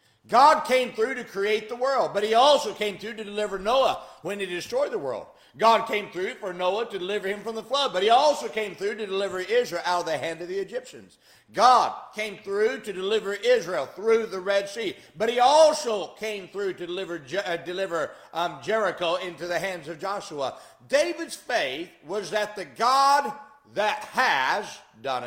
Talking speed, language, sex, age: 190 wpm, English, male, 50-69